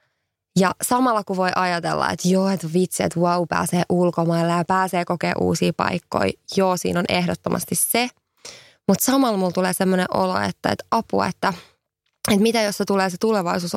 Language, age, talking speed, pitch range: English, 20-39, 170 wpm, 170-195 Hz